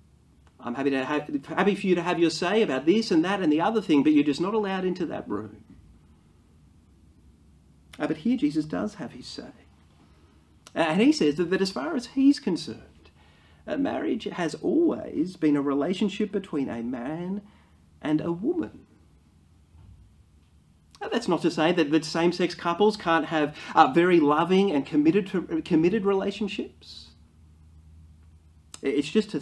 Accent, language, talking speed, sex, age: Australian, English, 165 wpm, male, 30-49